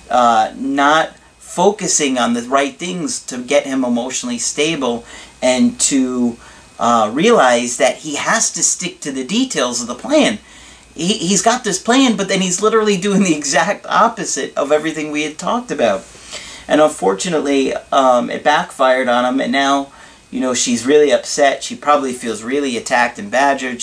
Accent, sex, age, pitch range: American, male, 40-59, 115-155 Hz